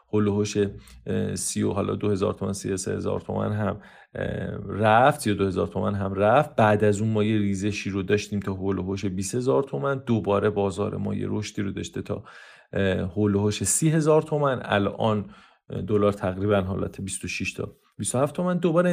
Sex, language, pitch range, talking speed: male, Persian, 100-140 Hz, 180 wpm